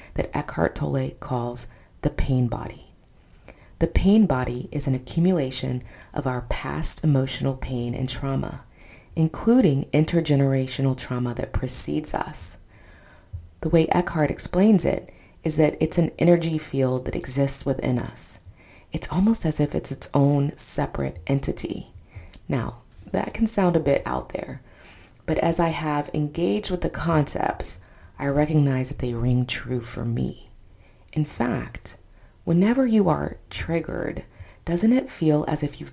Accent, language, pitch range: American, English, 105-155 Hz